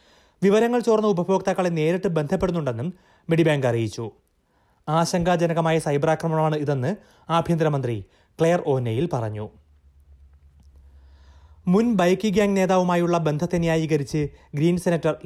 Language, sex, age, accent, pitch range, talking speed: Malayalam, male, 30-49, native, 135-175 Hz, 90 wpm